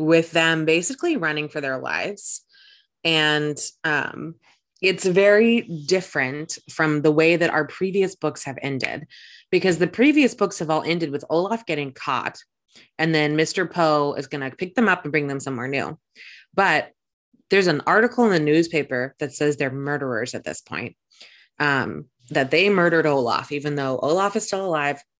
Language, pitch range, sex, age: English, 145-185 Hz, female, 20-39